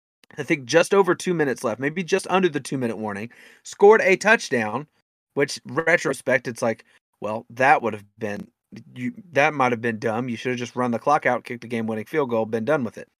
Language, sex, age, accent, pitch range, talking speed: English, male, 30-49, American, 120-190 Hz, 220 wpm